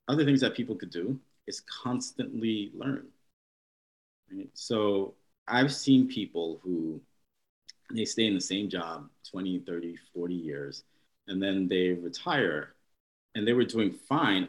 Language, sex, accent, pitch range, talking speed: English, male, American, 90-125 Hz, 135 wpm